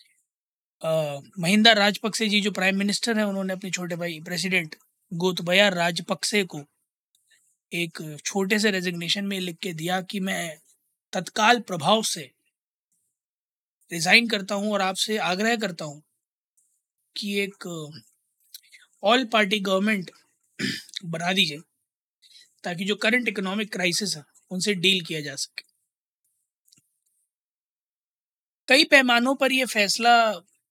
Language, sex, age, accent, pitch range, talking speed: Hindi, male, 20-39, native, 180-220 Hz, 115 wpm